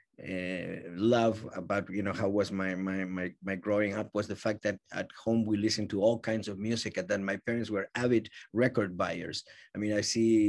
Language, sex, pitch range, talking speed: English, male, 95-120 Hz, 215 wpm